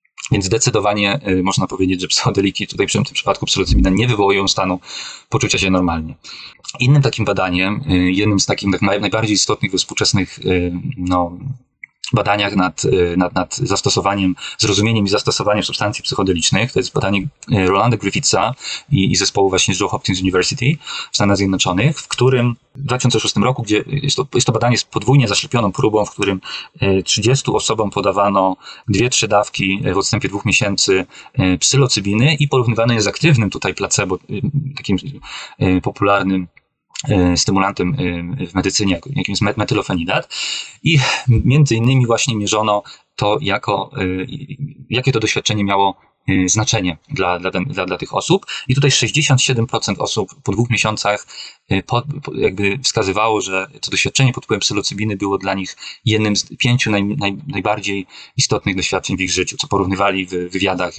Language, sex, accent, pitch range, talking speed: Polish, male, native, 95-125 Hz, 145 wpm